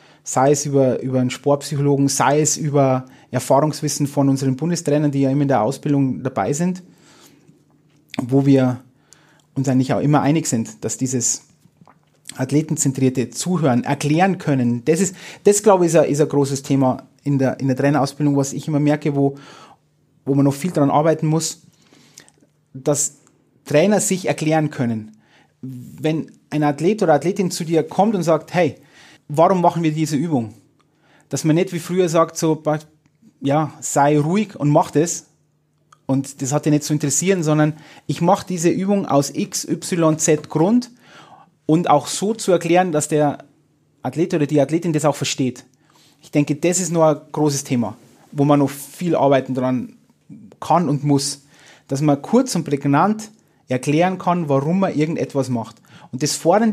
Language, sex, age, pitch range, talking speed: German, male, 30-49, 140-165 Hz, 170 wpm